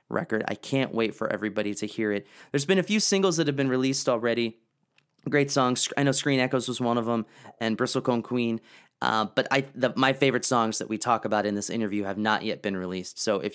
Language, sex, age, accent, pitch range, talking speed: English, male, 30-49, American, 105-130 Hz, 235 wpm